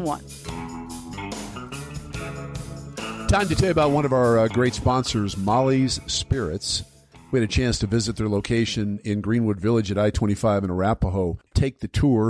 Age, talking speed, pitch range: 50-69, 155 wpm, 105-135 Hz